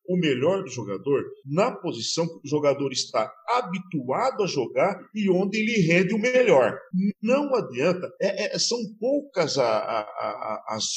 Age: 50-69